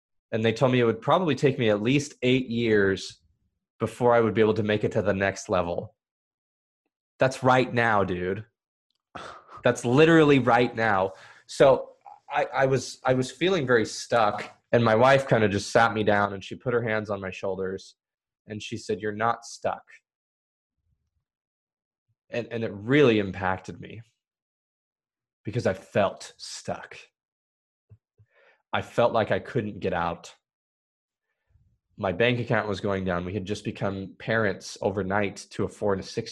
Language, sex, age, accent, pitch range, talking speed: English, male, 20-39, American, 95-120 Hz, 165 wpm